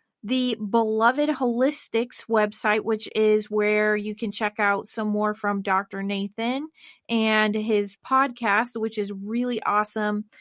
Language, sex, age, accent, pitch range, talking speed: English, female, 30-49, American, 215-255 Hz, 135 wpm